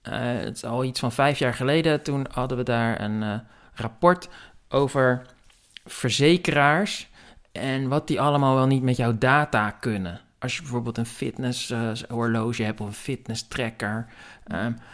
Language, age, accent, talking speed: Dutch, 50-69, Dutch, 160 wpm